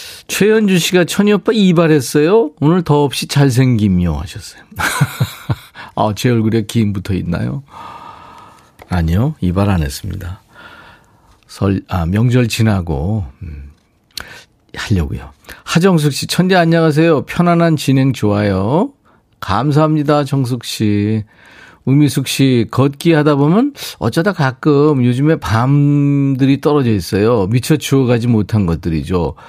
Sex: male